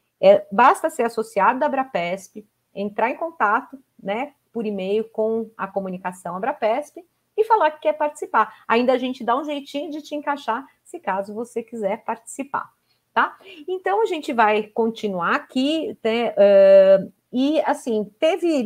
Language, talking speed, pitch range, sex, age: Portuguese, 150 wpm, 205-260 Hz, female, 40-59